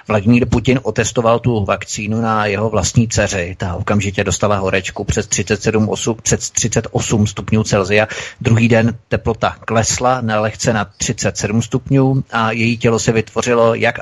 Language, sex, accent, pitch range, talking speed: Czech, male, native, 105-125 Hz, 135 wpm